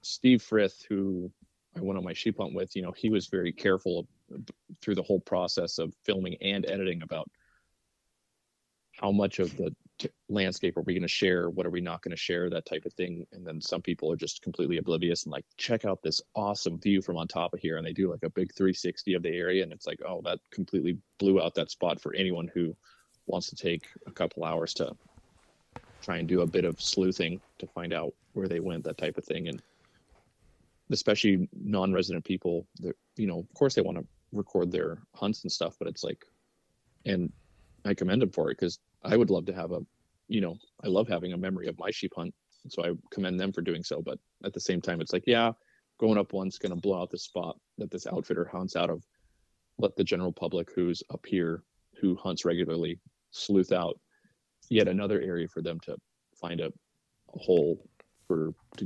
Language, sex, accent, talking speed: English, male, American, 215 wpm